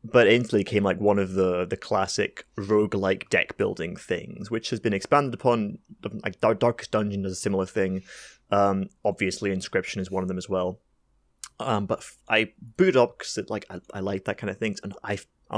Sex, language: male, English